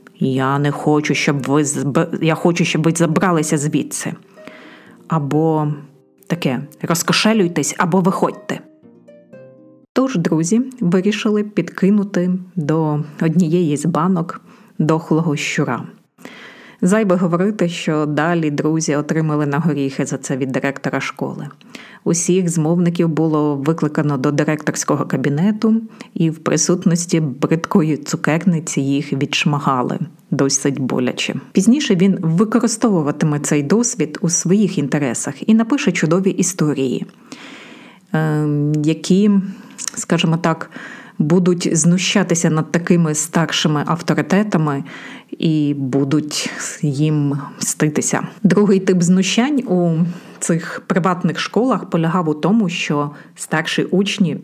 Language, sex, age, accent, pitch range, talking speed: Ukrainian, female, 30-49, native, 150-195 Hz, 105 wpm